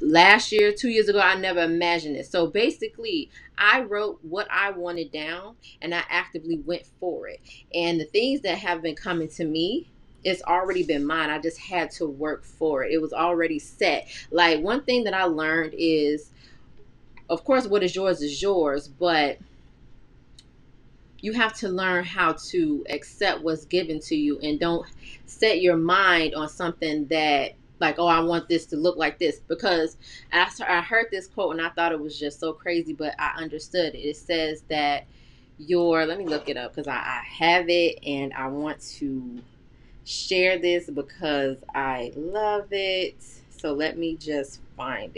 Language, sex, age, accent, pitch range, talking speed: English, female, 20-39, American, 150-185 Hz, 180 wpm